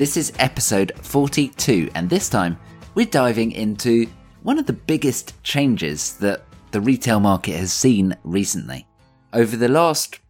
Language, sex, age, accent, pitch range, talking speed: English, male, 20-39, British, 95-140 Hz, 145 wpm